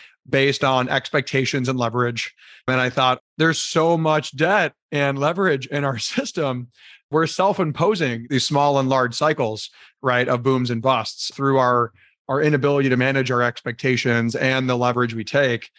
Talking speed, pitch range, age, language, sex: 160 wpm, 125-145 Hz, 30-49, English, male